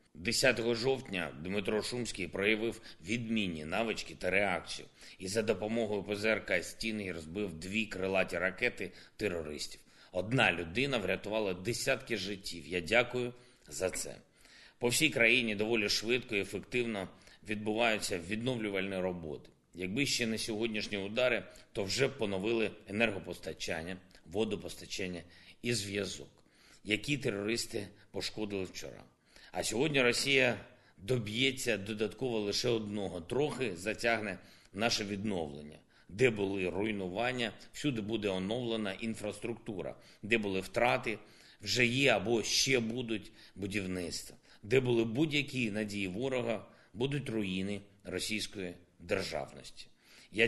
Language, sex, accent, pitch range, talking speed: Ukrainian, male, native, 95-120 Hz, 110 wpm